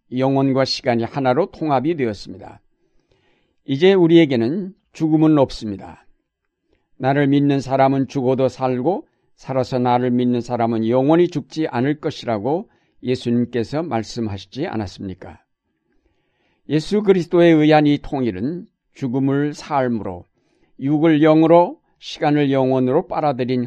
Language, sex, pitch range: Korean, male, 120-155 Hz